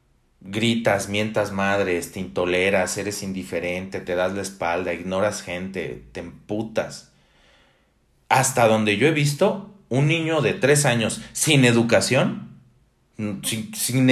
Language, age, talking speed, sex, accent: Spanish, 40-59, 125 wpm, male, Mexican